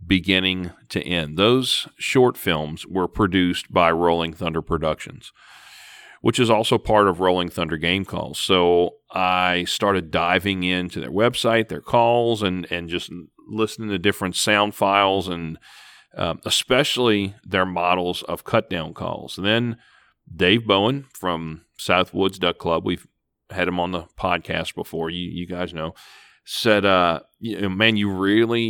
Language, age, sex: English, 40-59, male